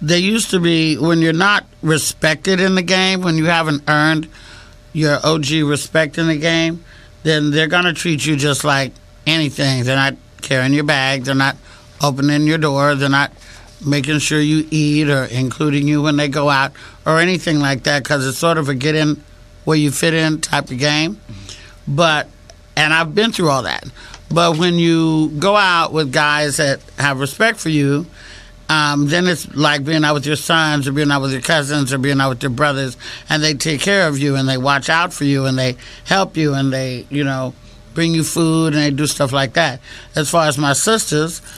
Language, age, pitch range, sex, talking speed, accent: English, 60-79, 135-160 Hz, male, 210 wpm, American